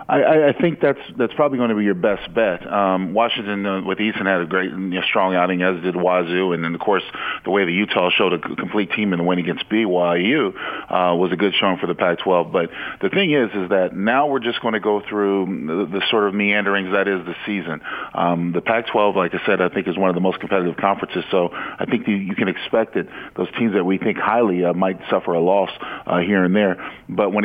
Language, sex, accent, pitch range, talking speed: English, male, American, 90-105 Hz, 250 wpm